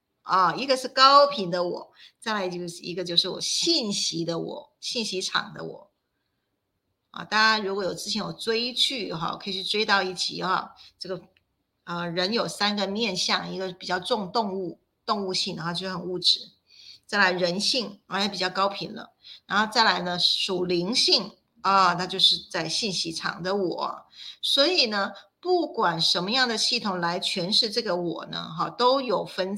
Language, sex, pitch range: Chinese, female, 180-225 Hz